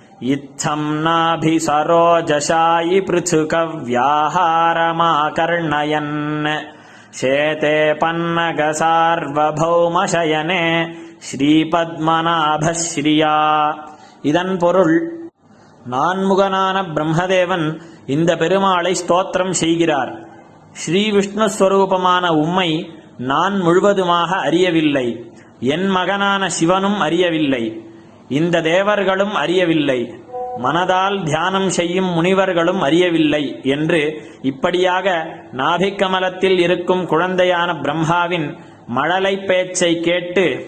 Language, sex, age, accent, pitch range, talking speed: Tamil, male, 20-39, native, 155-185 Hz, 60 wpm